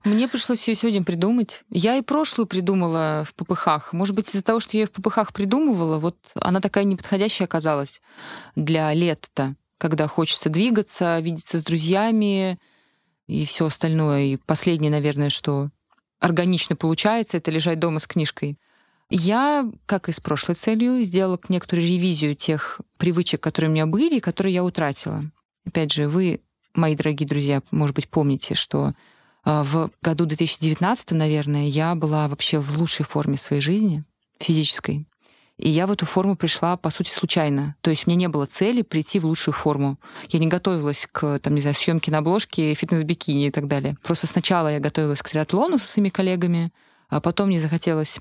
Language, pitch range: Russian, 155-190 Hz